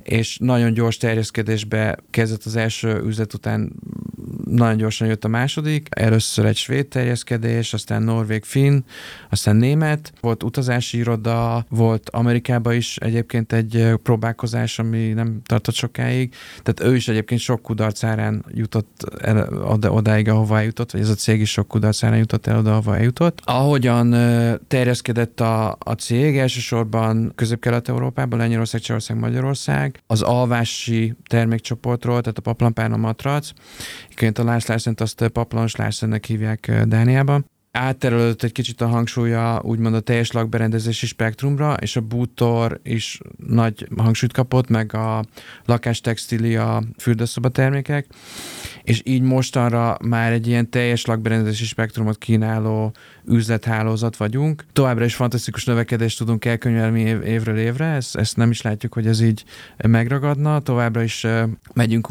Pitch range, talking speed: 110-120 Hz, 135 wpm